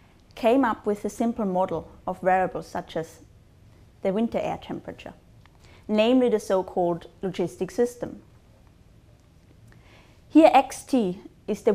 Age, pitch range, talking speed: 30-49, 170-225 Hz, 115 wpm